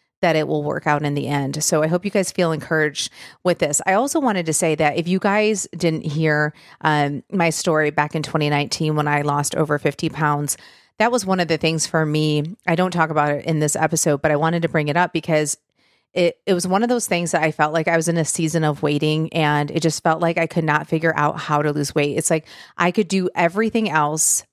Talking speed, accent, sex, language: 250 wpm, American, female, English